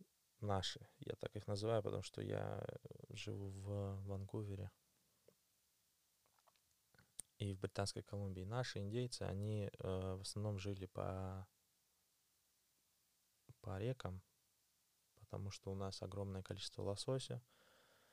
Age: 20-39